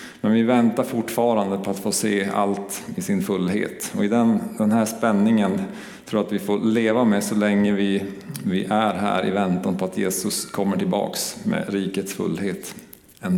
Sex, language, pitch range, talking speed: male, Swedish, 100-110 Hz, 190 wpm